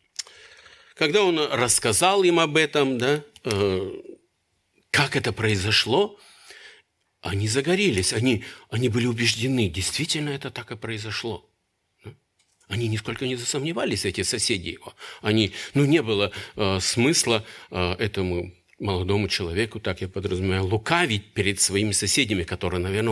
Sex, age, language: male, 50-69, Russian